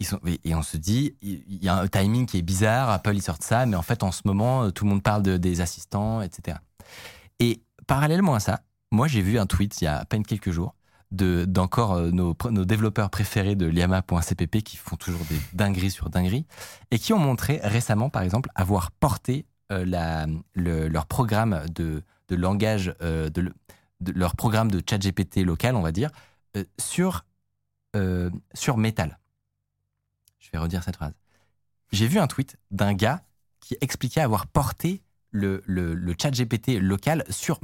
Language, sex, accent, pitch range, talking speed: French, male, French, 90-115 Hz, 185 wpm